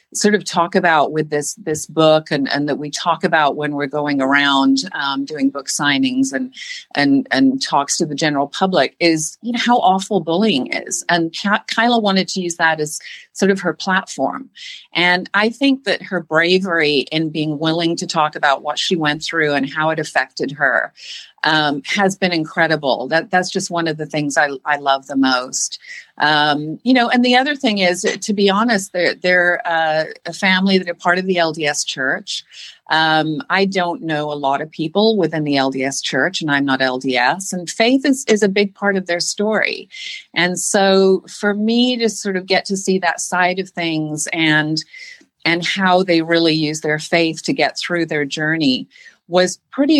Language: English